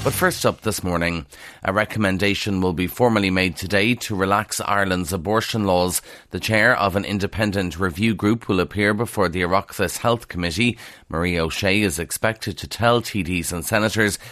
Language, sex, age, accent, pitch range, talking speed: English, male, 30-49, Irish, 90-135 Hz, 170 wpm